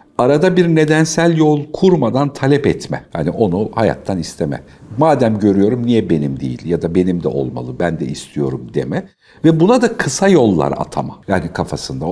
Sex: male